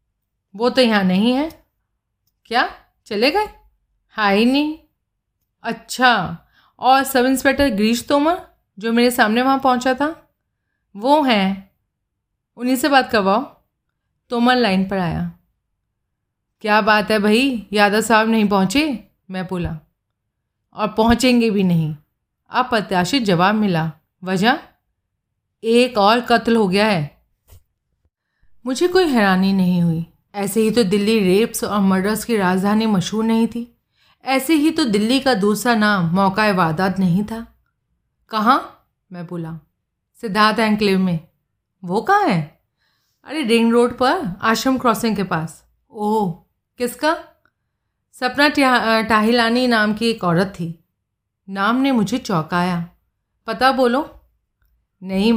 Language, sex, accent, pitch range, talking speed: Hindi, female, native, 185-250 Hz, 130 wpm